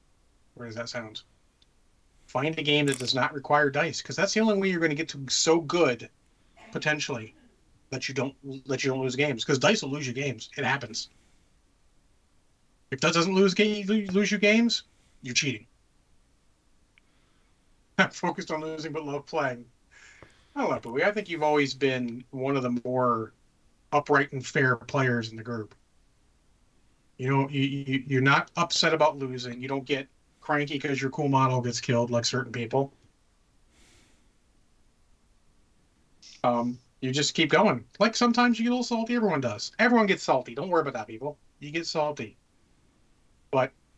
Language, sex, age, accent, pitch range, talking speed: English, male, 40-59, American, 120-155 Hz, 170 wpm